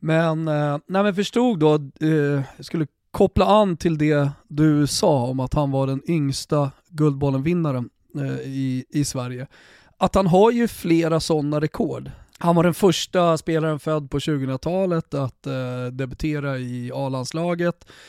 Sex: male